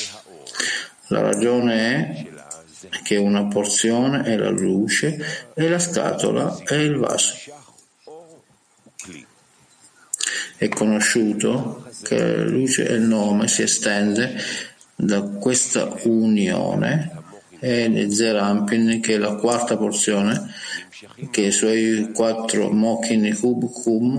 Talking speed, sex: 100 wpm, male